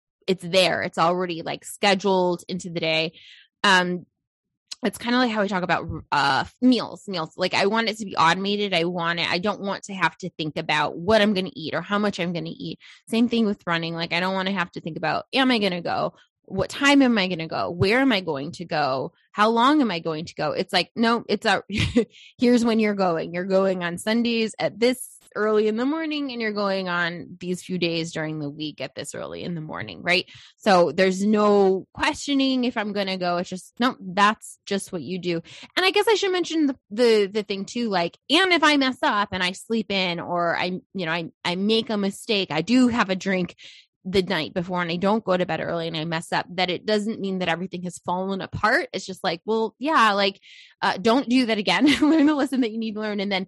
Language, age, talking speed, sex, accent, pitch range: English, 20-39, 245 wpm, female, American, 175-225 Hz